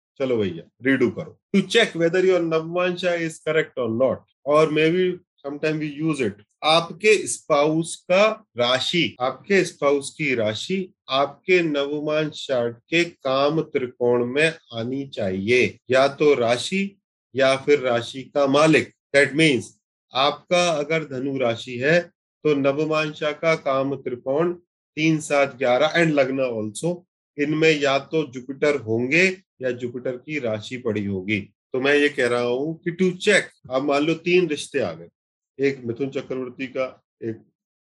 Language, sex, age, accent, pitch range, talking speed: Hindi, male, 30-49, native, 130-170 Hz, 145 wpm